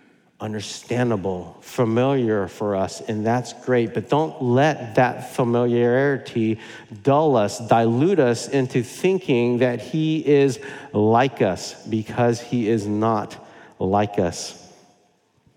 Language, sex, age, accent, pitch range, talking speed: English, male, 50-69, American, 115-155 Hz, 110 wpm